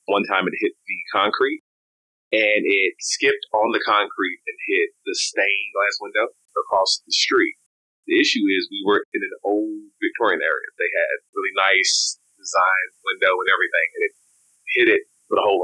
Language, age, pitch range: English, 30-49, 355-445 Hz